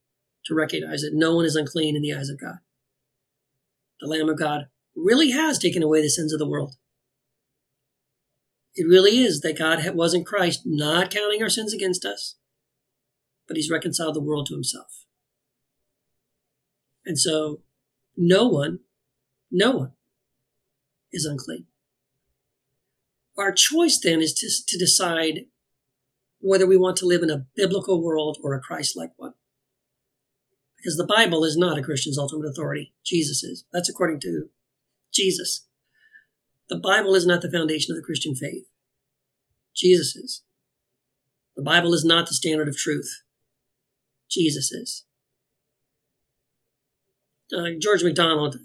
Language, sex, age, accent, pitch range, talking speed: English, male, 40-59, American, 150-185 Hz, 140 wpm